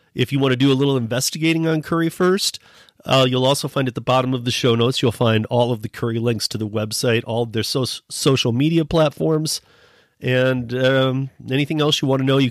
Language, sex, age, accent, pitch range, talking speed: English, male, 40-59, American, 115-140 Hz, 230 wpm